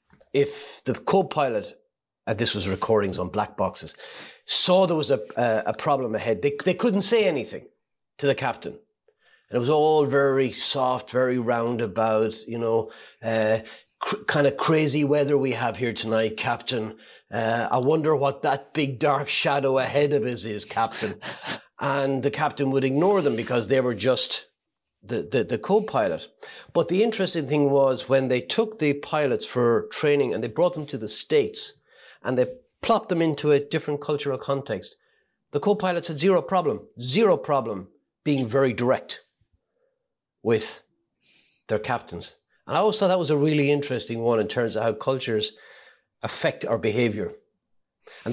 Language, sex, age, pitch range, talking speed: English, male, 30-49, 115-155 Hz, 165 wpm